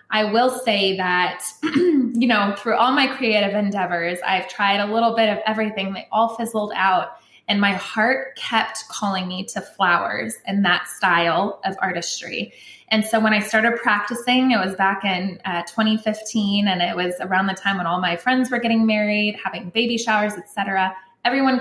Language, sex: English, female